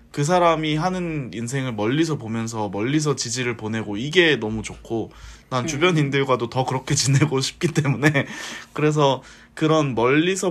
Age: 20-39